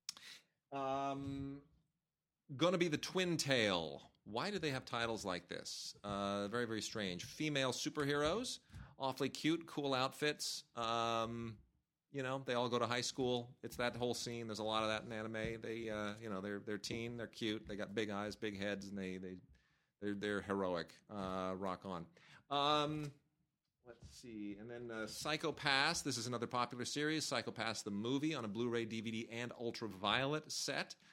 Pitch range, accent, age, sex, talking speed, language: 100-130 Hz, American, 40-59, male, 175 wpm, English